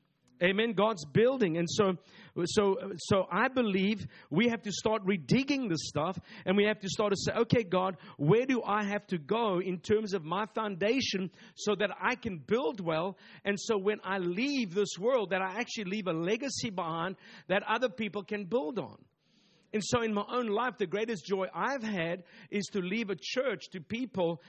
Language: English